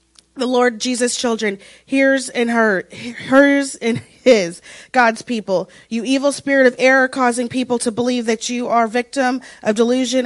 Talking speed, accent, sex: 160 wpm, American, female